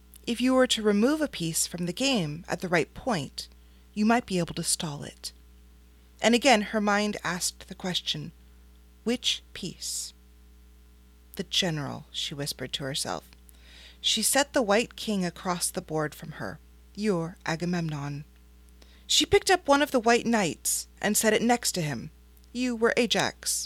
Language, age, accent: English, 30-49, American